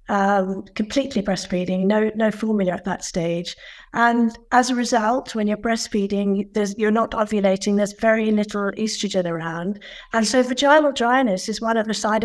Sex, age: female, 50-69